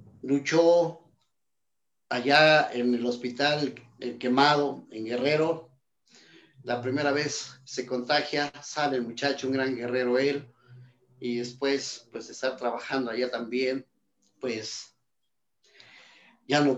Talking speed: 110 wpm